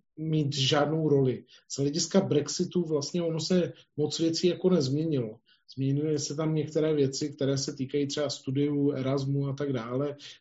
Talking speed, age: 155 wpm, 40-59